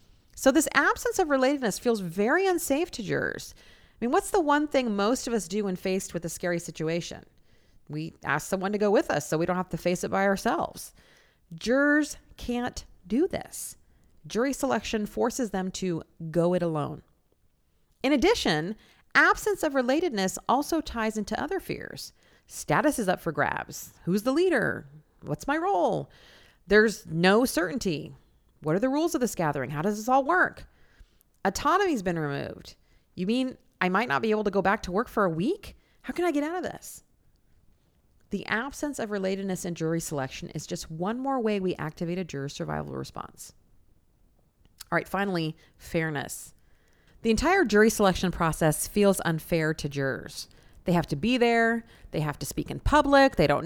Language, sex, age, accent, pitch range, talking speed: English, female, 40-59, American, 170-265 Hz, 180 wpm